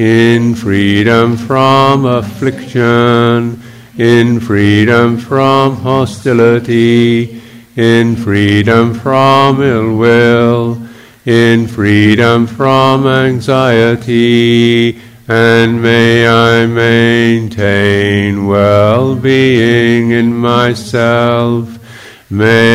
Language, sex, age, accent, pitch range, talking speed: English, male, 50-69, American, 115-120 Hz, 65 wpm